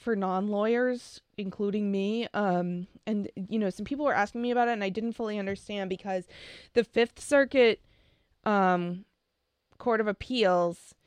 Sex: female